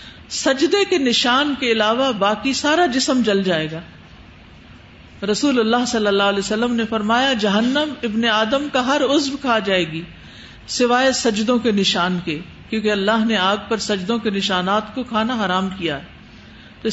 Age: 50-69